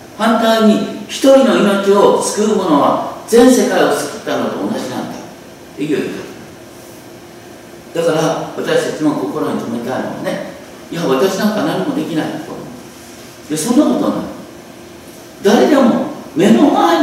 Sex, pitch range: male, 200-265 Hz